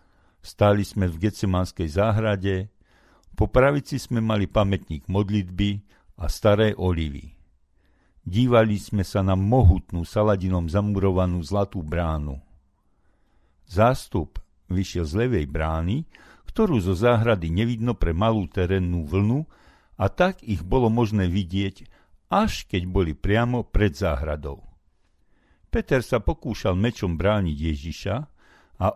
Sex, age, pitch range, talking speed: male, 60-79, 80-115 Hz, 115 wpm